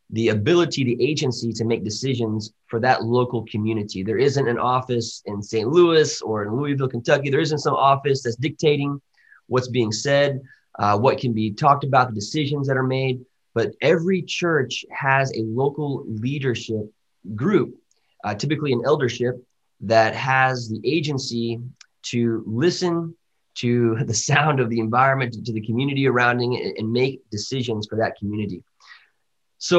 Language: English